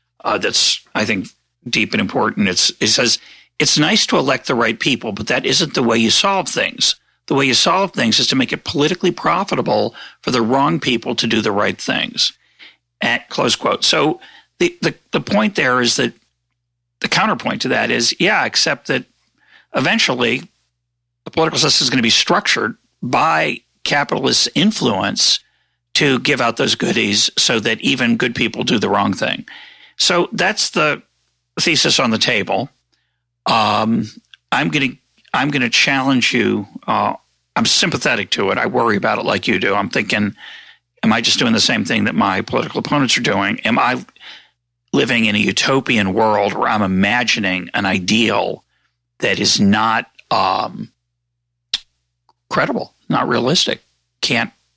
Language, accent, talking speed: English, American, 165 wpm